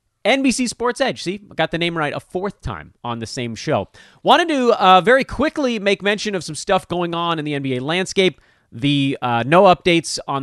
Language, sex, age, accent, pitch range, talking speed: English, male, 30-49, American, 120-175 Hz, 205 wpm